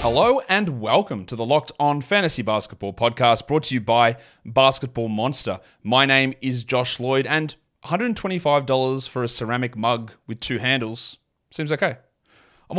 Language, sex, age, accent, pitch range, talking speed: English, male, 30-49, Australian, 120-160 Hz, 155 wpm